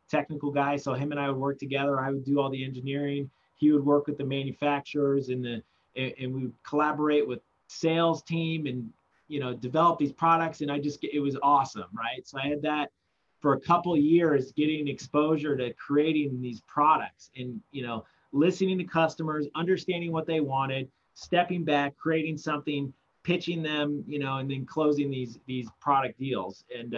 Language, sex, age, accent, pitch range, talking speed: English, male, 30-49, American, 135-155 Hz, 185 wpm